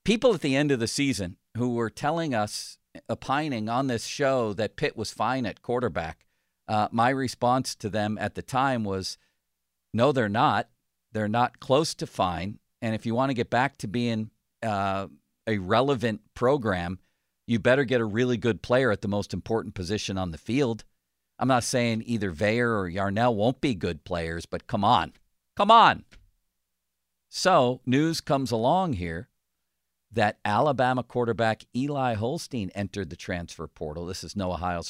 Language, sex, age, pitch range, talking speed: English, male, 50-69, 95-125 Hz, 170 wpm